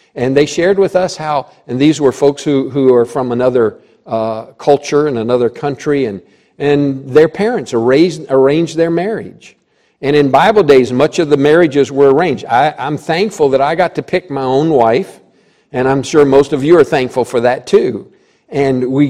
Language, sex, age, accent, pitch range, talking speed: English, male, 50-69, American, 125-160 Hz, 190 wpm